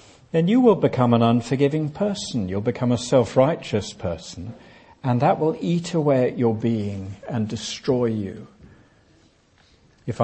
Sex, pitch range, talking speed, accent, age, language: male, 110-150 Hz, 140 wpm, British, 60-79, English